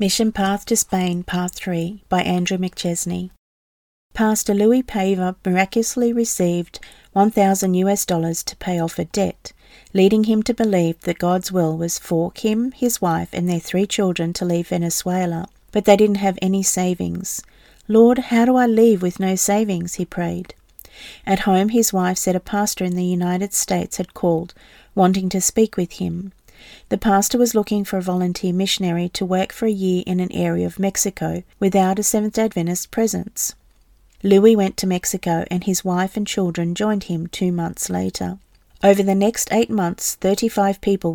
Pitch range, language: 175-205 Hz, English